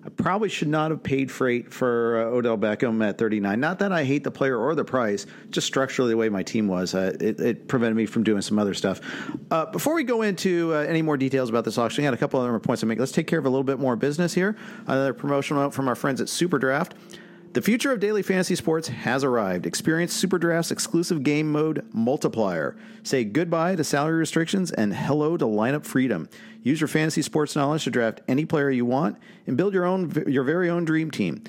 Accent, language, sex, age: American, English, male, 40-59